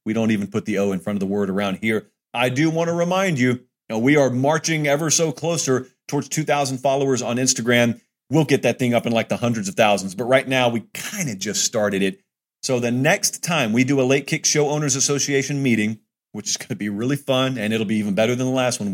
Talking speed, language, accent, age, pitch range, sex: 255 wpm, English, American, 40-59, 115-135 Hz, male